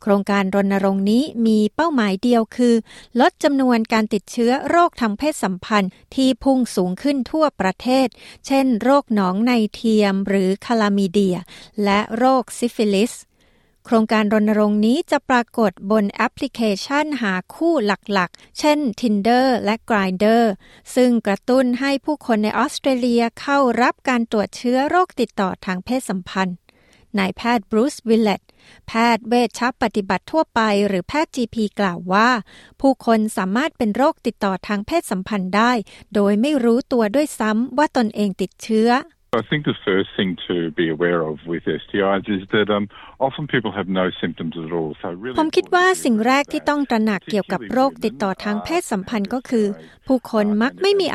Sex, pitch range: female, 205-255 Hz